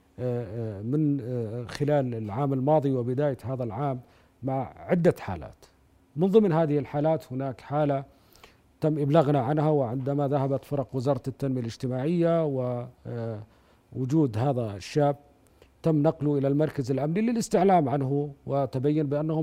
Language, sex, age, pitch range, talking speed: Arabic, male, 50-69, 125-155 Hz, 115 wpm